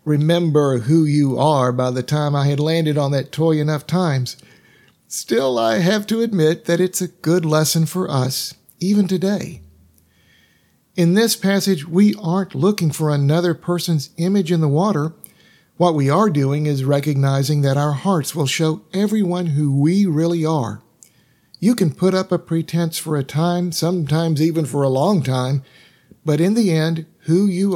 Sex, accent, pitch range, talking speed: male, American, 150-185 Hz, 170 wpm